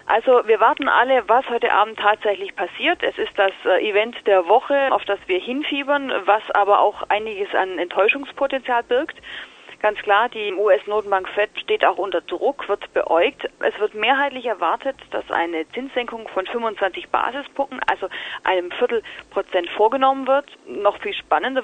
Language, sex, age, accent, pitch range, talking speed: German, female, 30-49, German, 195-260 Hz, 155 wpm